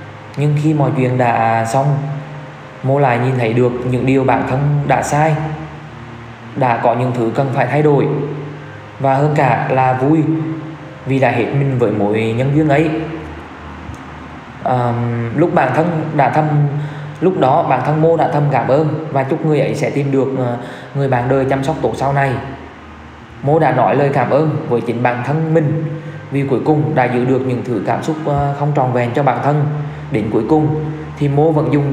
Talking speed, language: 195 wpm, Vietnamese